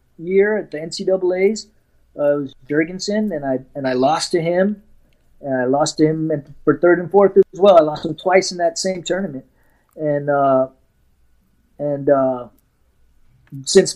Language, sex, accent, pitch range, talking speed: English, male, American, 140-175 Hz, 170 wpm